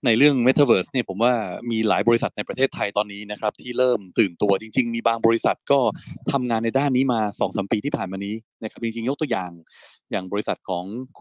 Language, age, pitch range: Thai, 20-39, 100-125 Hz